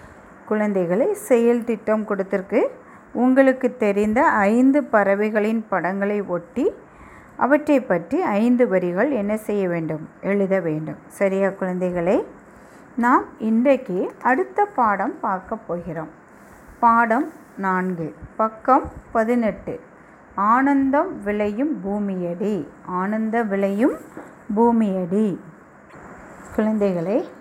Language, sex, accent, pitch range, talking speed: Tamil, female, native, 205-265 Hz, 85 wpm